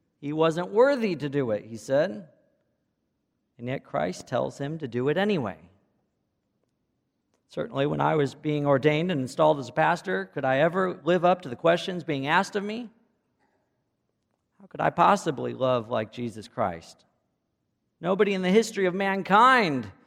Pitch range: 140-185 Hz